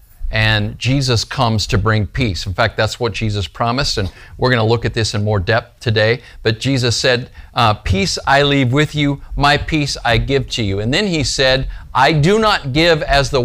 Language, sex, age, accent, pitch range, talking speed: English, male, 50-69, American, 105-135 Hz, 210 wpm